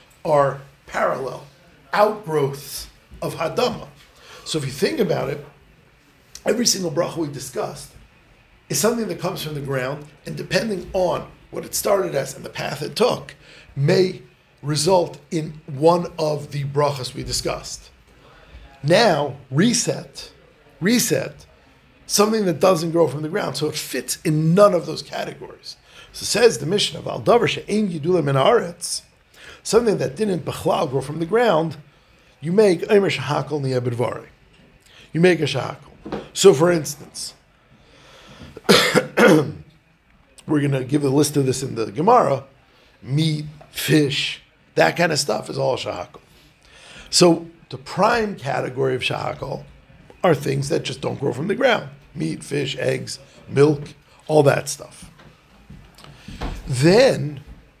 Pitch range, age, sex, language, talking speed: 140-175 Hz, 50-69, male, English, 140 wpm